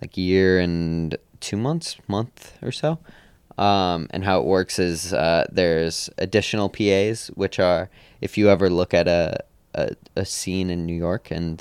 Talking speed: 170 wpm